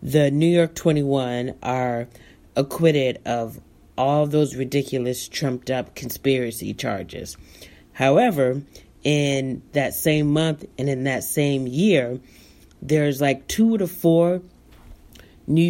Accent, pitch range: American, 130-165 Hz